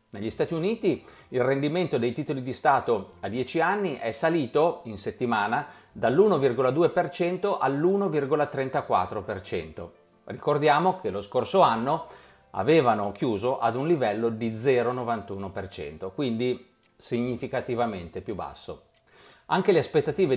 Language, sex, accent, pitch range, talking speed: Italian, male, native, 115-185 Hz, 110 wpm